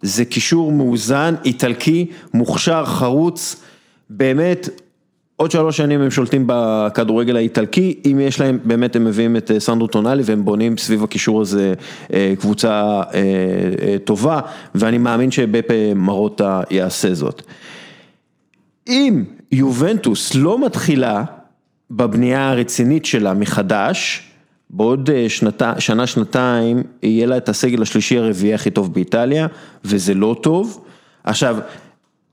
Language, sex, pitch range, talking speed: Hebrew, male, 110-155 Hz, 115 wpm